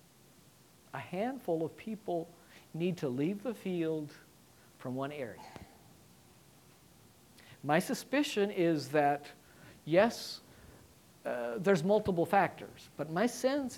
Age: 60-79